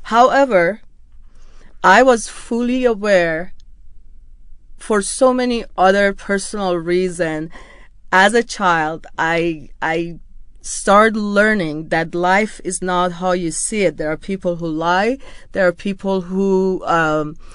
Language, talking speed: English, 125 wpm